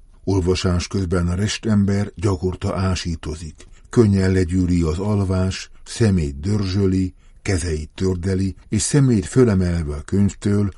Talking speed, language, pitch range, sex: 105 wpm, Hungarian, 85-100 Hz, male